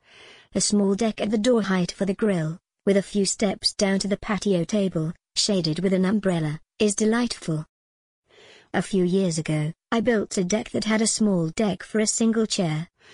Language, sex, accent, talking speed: English, male, British, 190 wpm